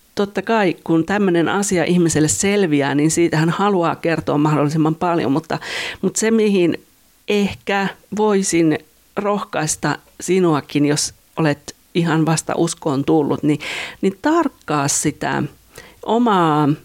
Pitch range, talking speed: 150-190 Hz, 120 wpm